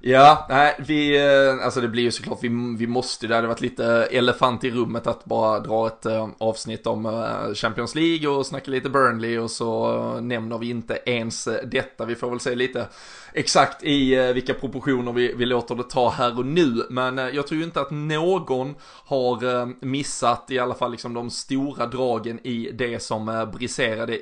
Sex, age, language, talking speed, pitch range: male, 20-39, Swedish, 185 wpm, 120-140 Hz